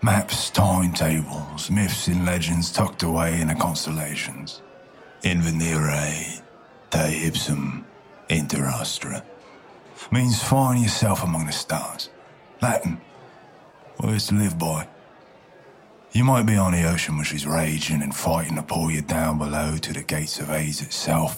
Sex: male